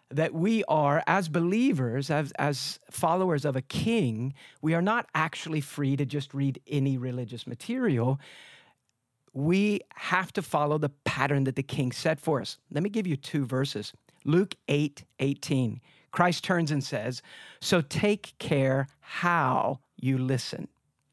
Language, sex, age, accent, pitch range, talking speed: English, male, 50-69, American, 135-180 Hz, 150 wpm